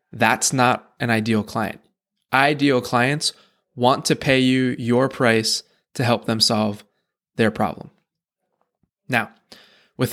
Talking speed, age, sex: 125 wpm, 20-39, male